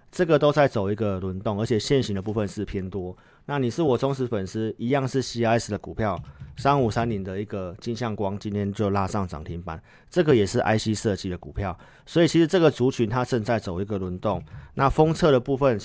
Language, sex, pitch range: Chinese, male, 100-130 Hz